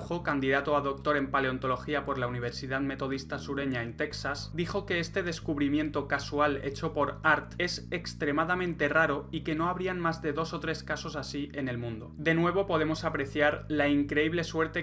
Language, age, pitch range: Spanish, 20-39, 135-160 Hz